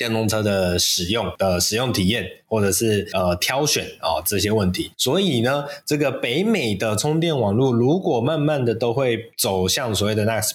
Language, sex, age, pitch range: Chinese, male, 20-39, 105-145 Hz